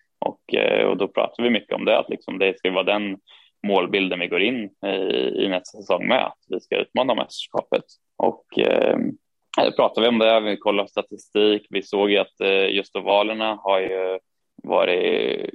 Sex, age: male, 10-29